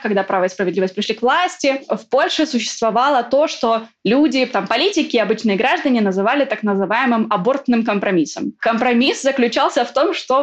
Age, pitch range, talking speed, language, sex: 20-39, 205-255 Hz, 160 wpm, Russian, female